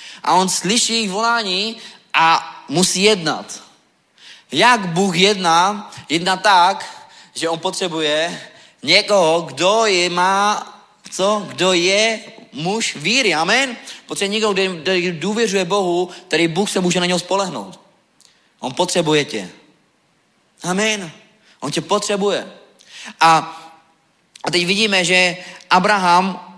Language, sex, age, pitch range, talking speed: Czech, male, 20-39, 165-200 Hz, 110 wpm